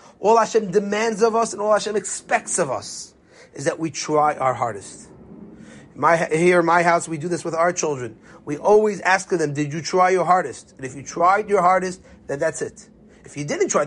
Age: 30-49